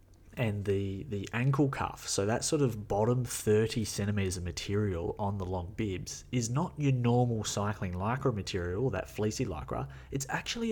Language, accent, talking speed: English, Australian, 170 wpm